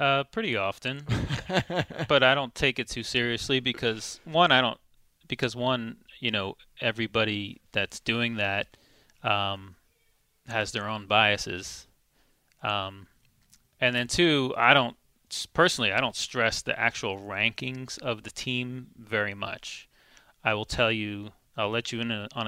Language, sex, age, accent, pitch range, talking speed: English, male, 30-49, American, 105-125 Hz, 145 wpm